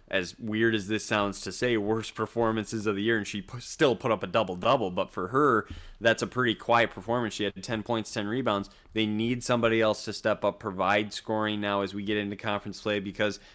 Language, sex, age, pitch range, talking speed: English, male, 20-39, 100-115 Hz, 220 wpm